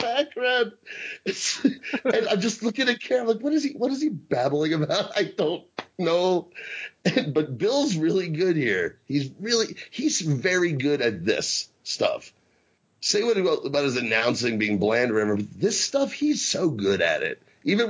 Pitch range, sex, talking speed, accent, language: 120-190 Hz, male, 165 wpm, American, English